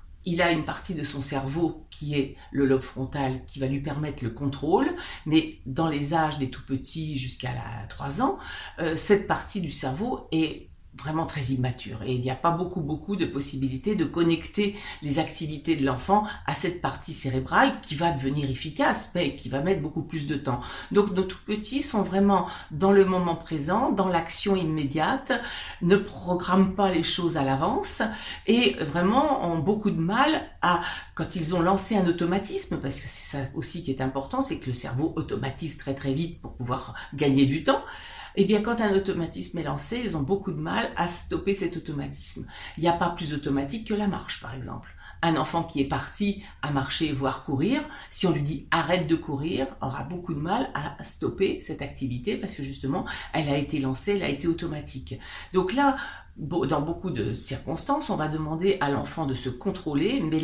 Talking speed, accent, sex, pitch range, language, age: 195 wpm, French, female, 135-195 Hz, French, 50-69